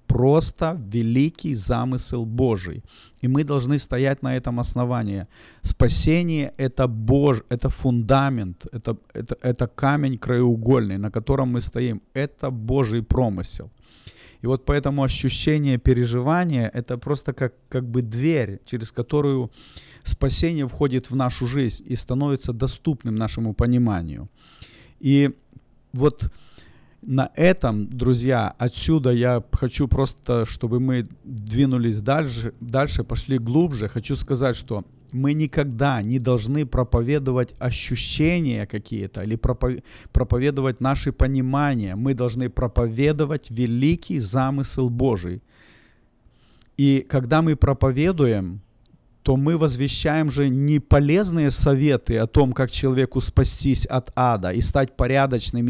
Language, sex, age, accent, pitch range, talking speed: Russian, male, 40-59, native, 115-140 Hz, 115 wpm